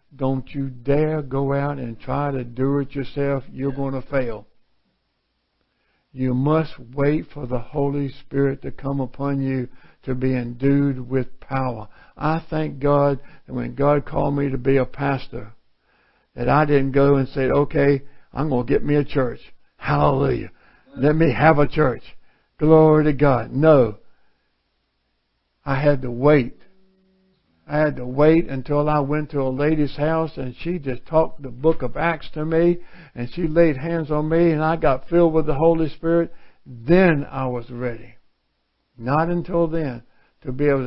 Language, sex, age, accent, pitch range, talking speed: English, male, 60-79, American, 125-150 Hz, 170 wpm